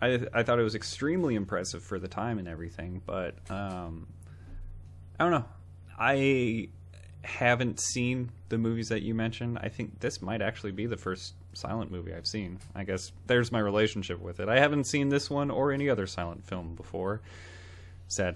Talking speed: 180 wpm